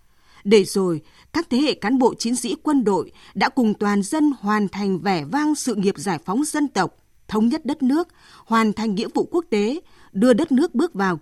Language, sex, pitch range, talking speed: Vietnamese, female, 195-285 Hz, 215 wpm